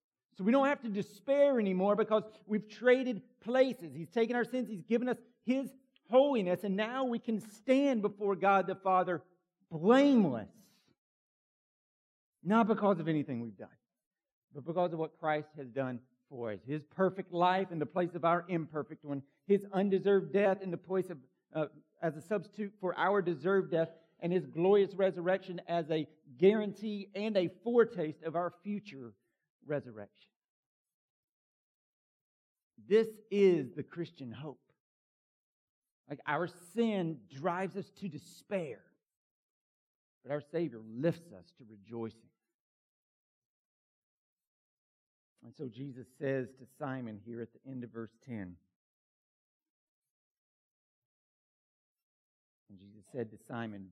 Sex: male